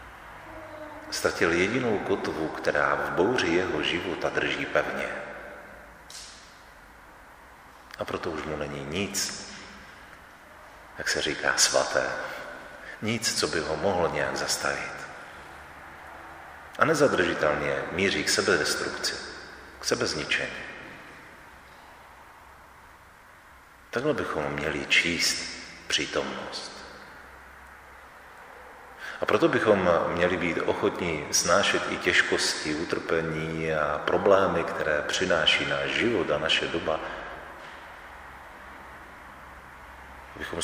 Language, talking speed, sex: Czech, 85 wpm, male